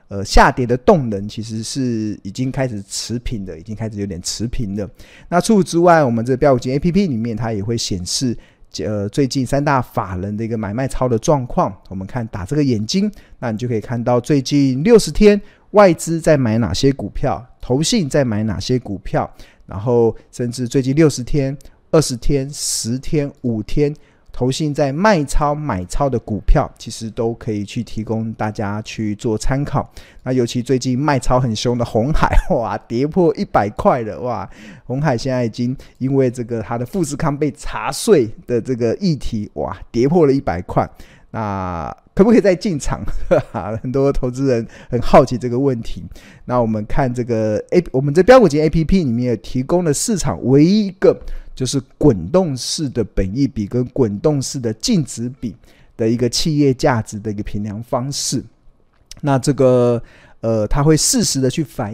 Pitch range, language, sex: 110-145 Hz, Chinese, male